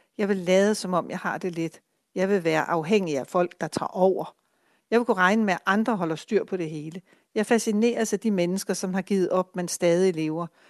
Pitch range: 175-215 Hz